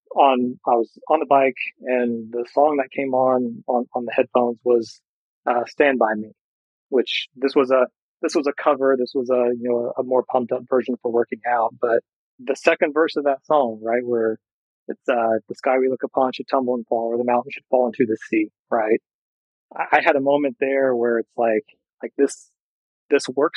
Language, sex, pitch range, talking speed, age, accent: English, male, 120-140 Hz, 215 wpm, 30-49, American